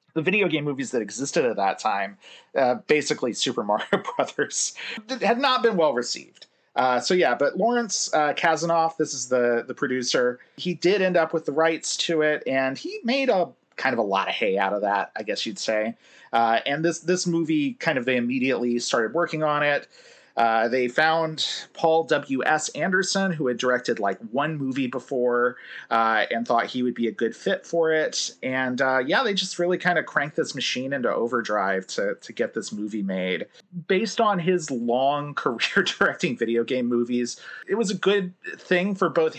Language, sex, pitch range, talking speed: English, male, 120-170 Hz, 200 wpm